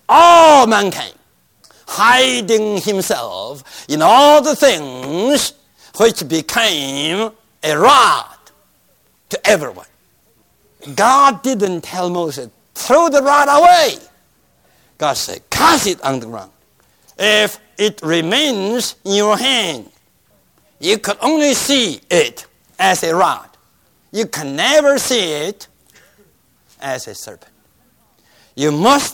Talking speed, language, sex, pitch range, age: 110 wpm, English, male, 200-300 Hz, 50-69